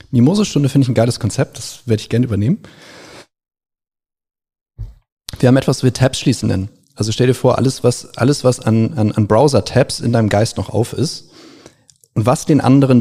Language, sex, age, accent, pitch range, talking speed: German, male, 40-59, German, 105-130 Hz, 195 wpm